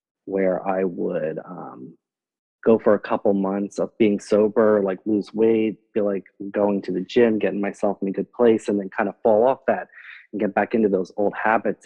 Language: English